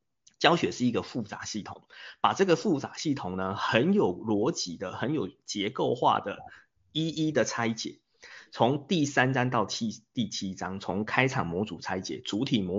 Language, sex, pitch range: Chinese, male, 110-180 Hz